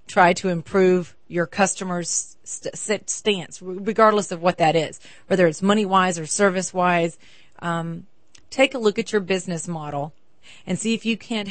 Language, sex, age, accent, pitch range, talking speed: English, female, 40-59, American, 170-200 Hz, 145 wpm